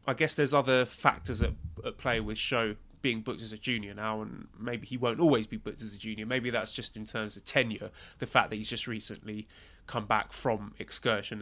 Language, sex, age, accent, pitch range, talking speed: English, male, 20-39, British, 105-130 Hz, 225 wpm